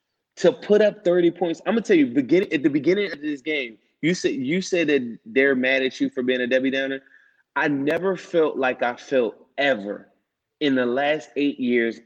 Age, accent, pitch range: 20-39, American, 125-165 Hz